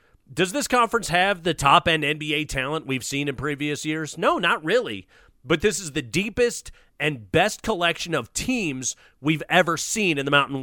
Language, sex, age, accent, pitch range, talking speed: English, male, 30-49, American, 140-185 Hz, 180 wpm